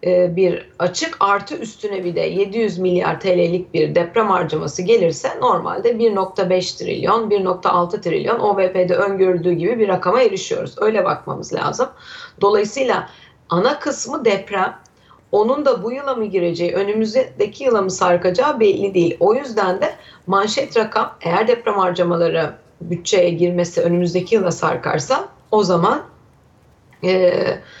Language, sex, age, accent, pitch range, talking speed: Turkish, female, 30-49, native, 175-230 Hz, 125 wpm